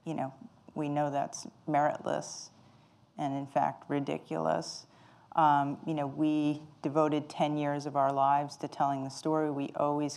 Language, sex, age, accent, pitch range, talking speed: English, female, 40-59, American, 145-160 Hz, 155 wpm